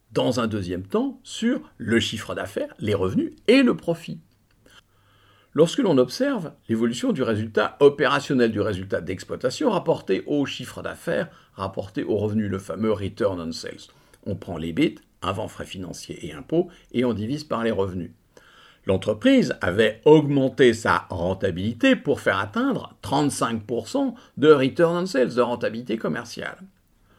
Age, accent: 50-69, French